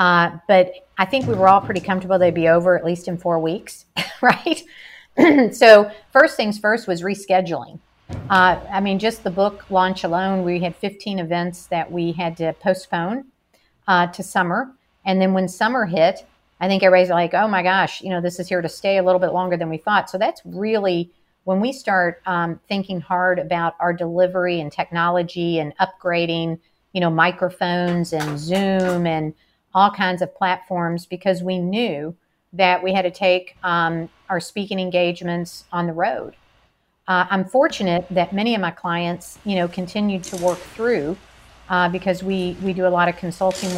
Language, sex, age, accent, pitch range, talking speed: English, female, 50-69, American, 175-195 Hz, 185 wpm